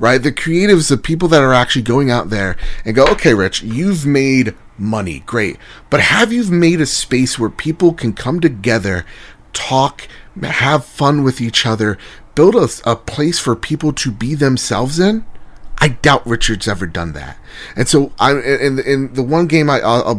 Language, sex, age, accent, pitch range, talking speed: English, male, 30-49, American, 110-150 Hz, 185 wpm